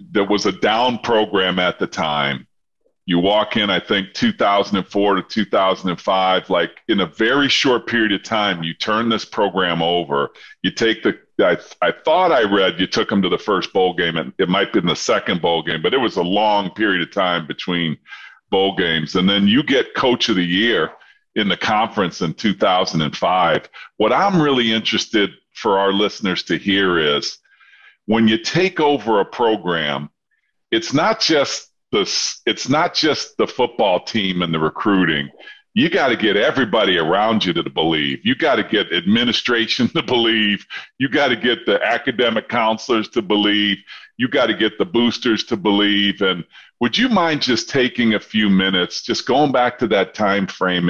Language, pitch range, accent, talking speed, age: English, 90-115 Hz, American, 185 wpm, 40-59